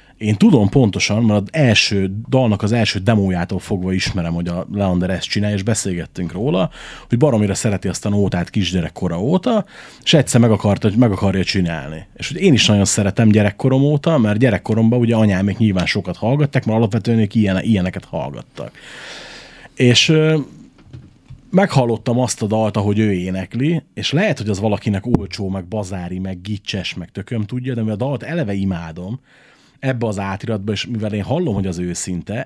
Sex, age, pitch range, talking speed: male, 30-49, 95-120 Hz, 170 wpm